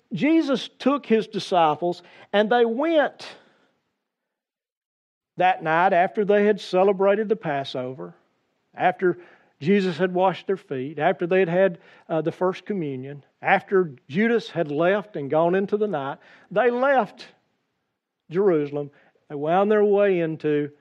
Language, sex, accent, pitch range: English, male, American, 165-210 Hz